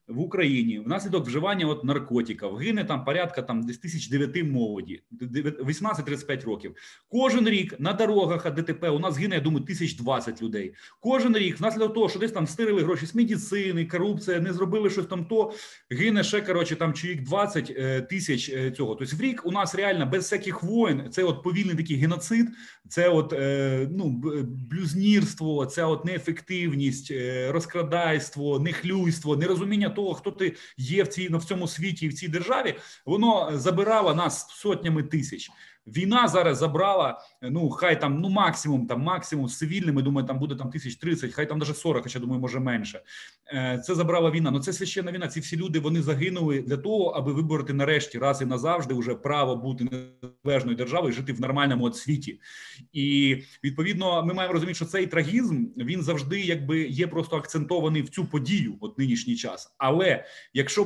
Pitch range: 140-185 Hz